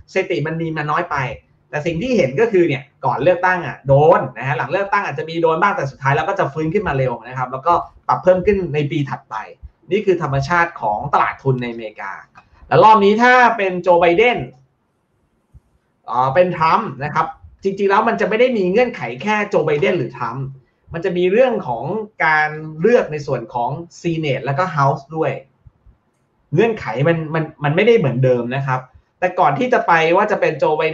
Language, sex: Thai, male